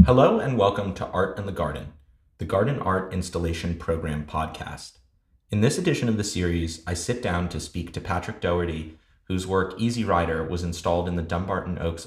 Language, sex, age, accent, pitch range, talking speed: English, male, 30-49, American, 85-100 Hz, 190 wpm